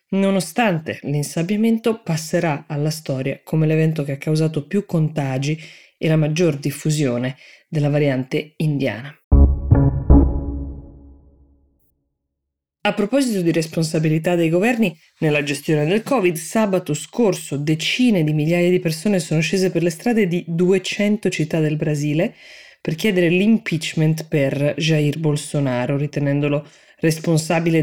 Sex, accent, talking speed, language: female, native, 115 wpm, Italian